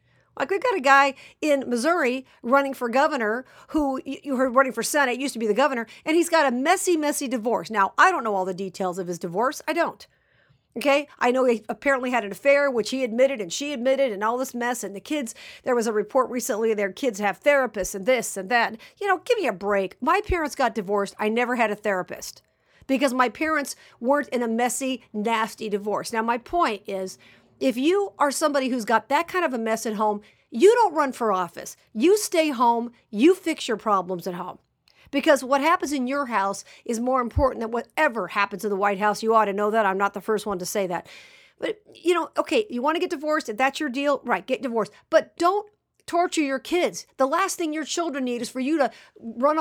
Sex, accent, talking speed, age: female, American, 230 wpm, 50-69